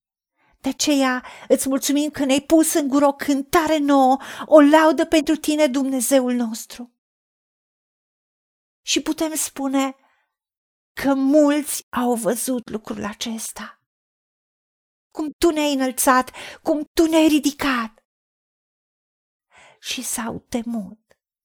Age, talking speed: 50-69, 105 wpm